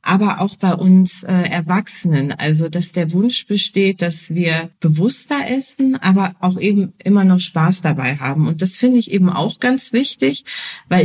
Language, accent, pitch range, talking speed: German, German, 175-210 Hz, 170 wpm